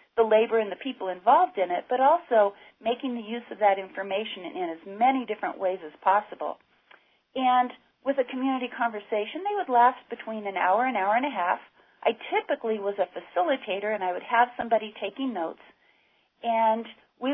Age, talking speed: 40-59, 190 wpm